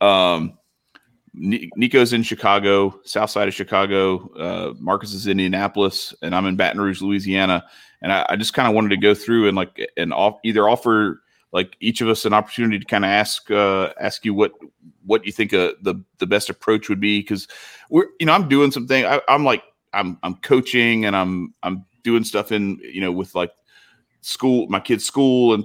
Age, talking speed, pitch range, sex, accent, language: 30-49, 205 wpm, 95-110 Hz, male, American, English